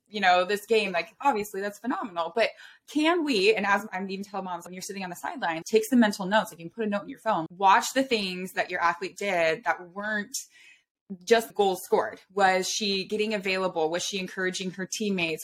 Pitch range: 175-215 Hz